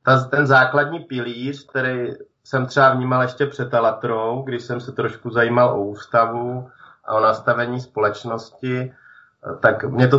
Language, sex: Czech, male